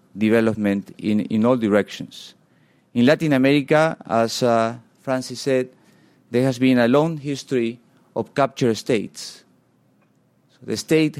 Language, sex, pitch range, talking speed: English, male, 115-150 Hz, 130 wpm